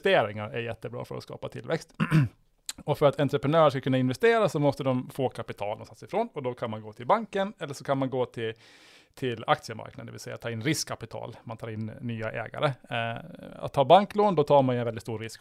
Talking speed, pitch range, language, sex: 230 wpm, 115-150 Hz, Swedish, male